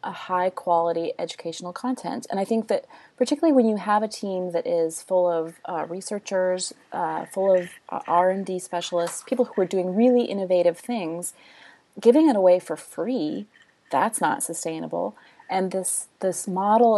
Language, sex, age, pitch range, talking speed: English, female, 30-49, 170-205 Hz, 160 wpm